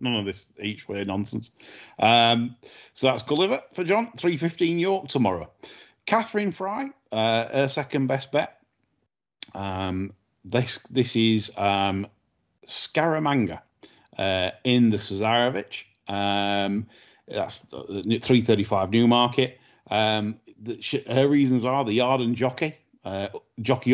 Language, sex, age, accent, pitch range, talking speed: English, male, 40-59, British, 100-130 Hz, 120 wpm